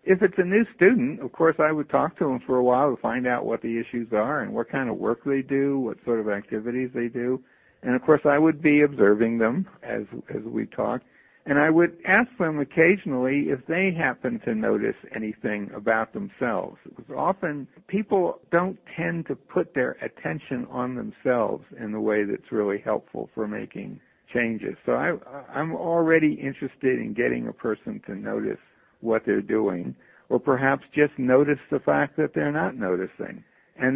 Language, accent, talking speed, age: English, American, 185 wpm, 60-79